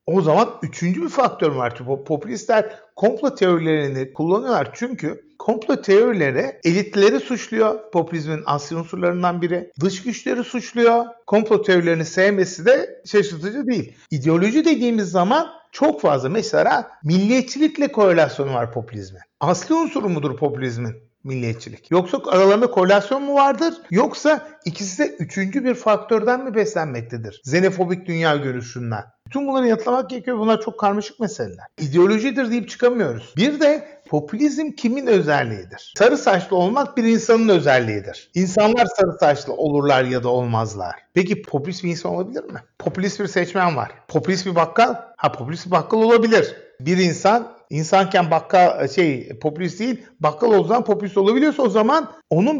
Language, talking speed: Turkish, 135 wpm